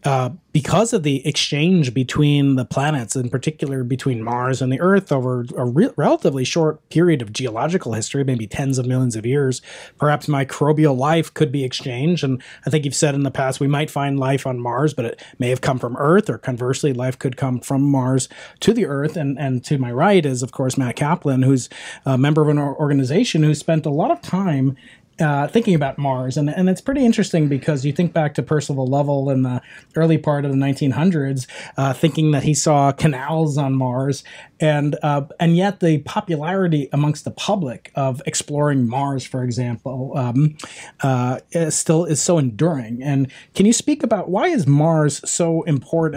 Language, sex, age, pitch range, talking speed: English, male, 30-49, 130-160 Hz, 195 wpm